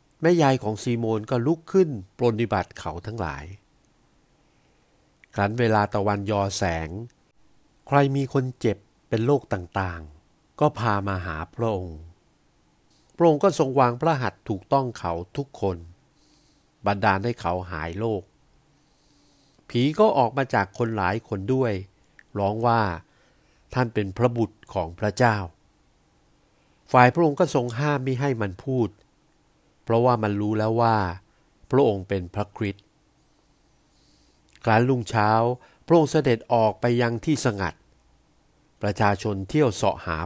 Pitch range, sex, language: 100-125 Hz, male, Thai